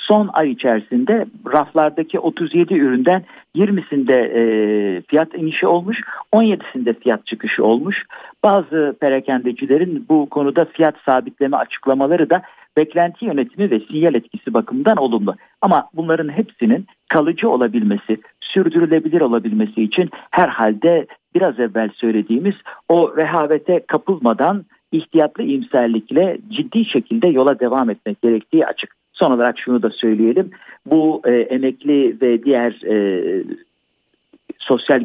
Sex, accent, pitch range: male, native, 120-190 Hz